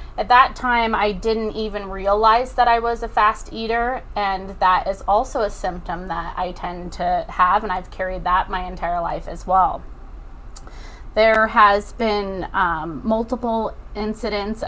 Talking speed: 160 wpm